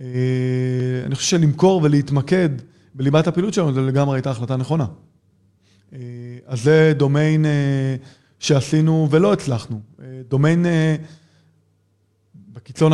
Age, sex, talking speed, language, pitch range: 20-39, male, 115 wpm, Hebrew, 130-155 Hz